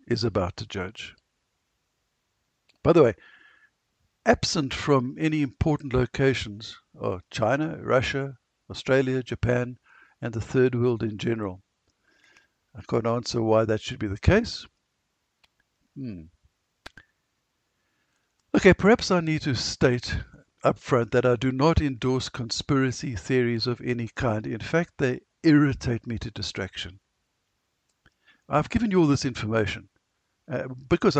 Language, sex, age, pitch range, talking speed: English, male, 60-79, 110-140 Hz, 125 wpm